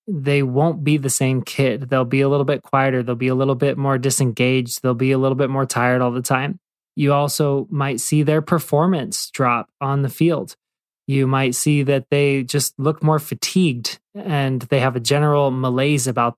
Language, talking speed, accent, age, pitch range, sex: English, 200 wpm, American, 20-39, 130-150 Hz, male